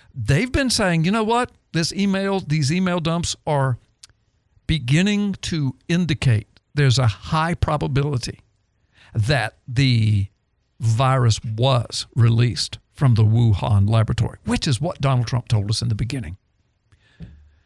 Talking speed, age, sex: 130 wpm, 60-79, male